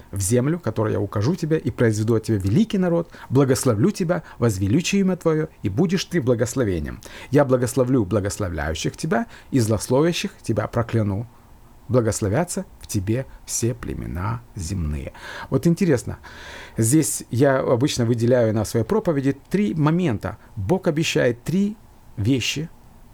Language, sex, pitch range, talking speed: Russian, male, 110-150 Hz, 130 wpm